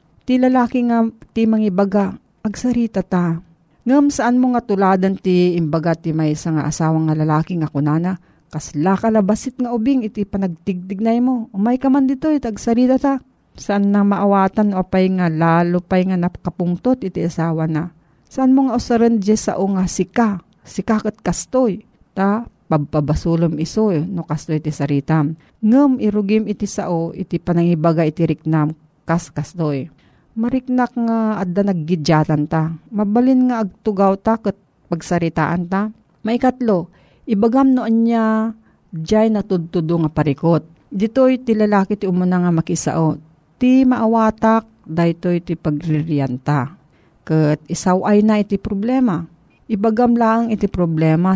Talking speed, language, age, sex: 135 wpm, Filipino, 40-59, female